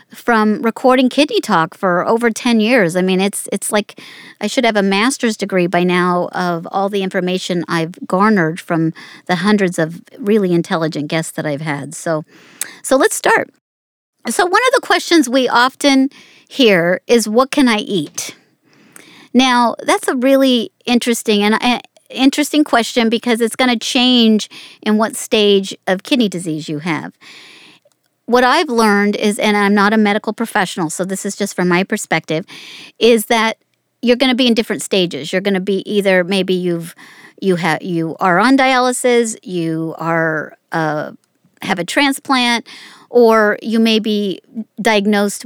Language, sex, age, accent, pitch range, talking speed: English, female, 50-69, American, 175-240 Hz, 165 wpm